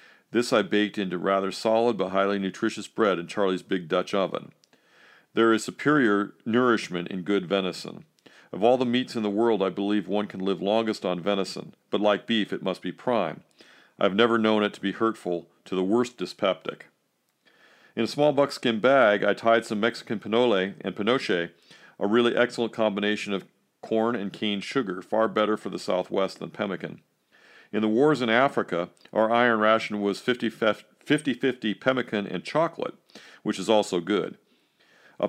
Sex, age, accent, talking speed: male, 40-59, American, 170 wpm